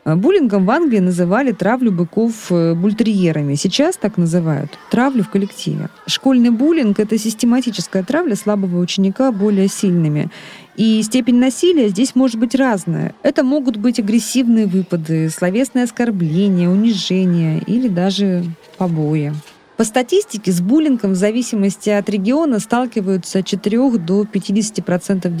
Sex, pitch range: female, 185-240 Hz